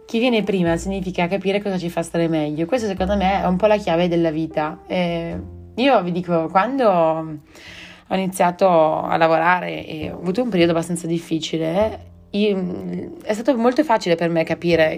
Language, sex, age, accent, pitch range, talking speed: Italian, female, 20-39, native, 160-195 Hz, 175 wpm